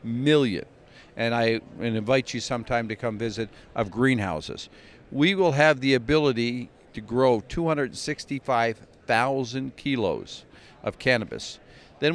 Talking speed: 115 wpm